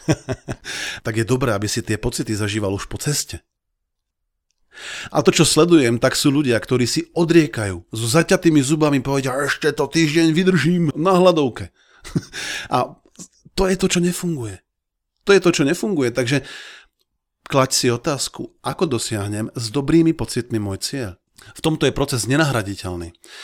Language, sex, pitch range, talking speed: Slovak, male, 115-145 Hz, 150 wpm